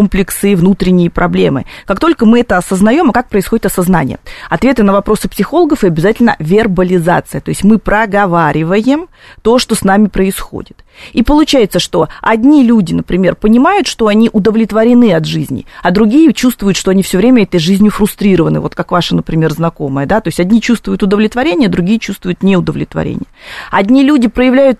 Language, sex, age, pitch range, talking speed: Russian, female, 30-49, 180-235 Hz, 160 wpm